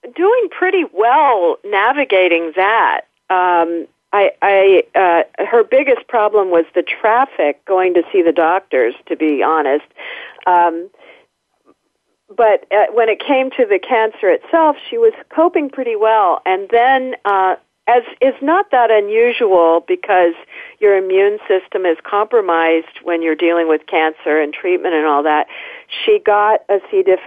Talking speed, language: 145 wpm, English